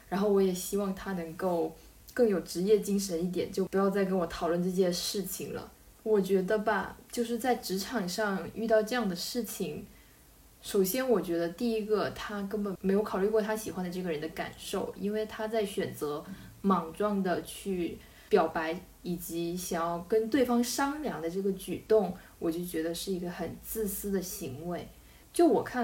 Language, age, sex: Chinese, 20-39, female